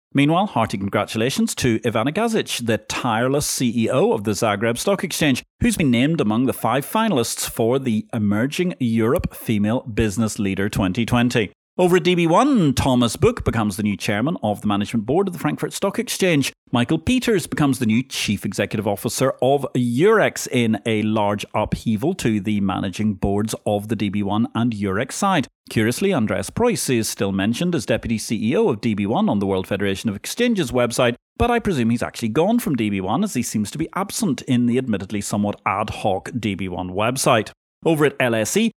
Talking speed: 175 wpm